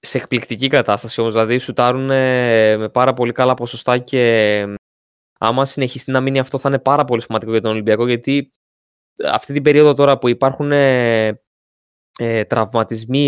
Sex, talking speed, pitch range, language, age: male, 155 wpm, 115-135 Hz, Greek, 20-39